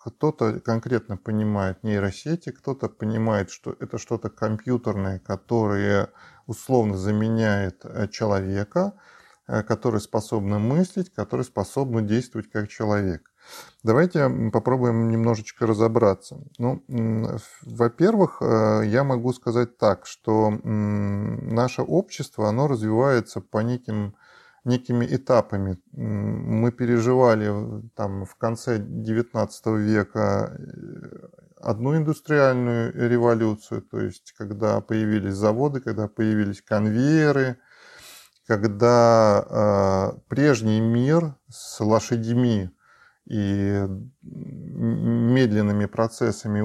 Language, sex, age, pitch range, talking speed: Russian, male, 20-39, 105-125 Hz, 85 wpm